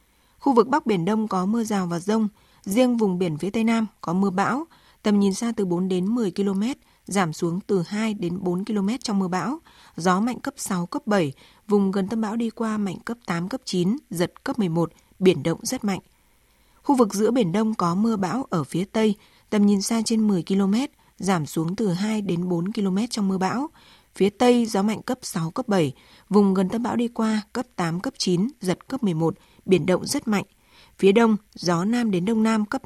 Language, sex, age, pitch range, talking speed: Vietnamese, female, 20-39, 185-230 Hz, 220 wpm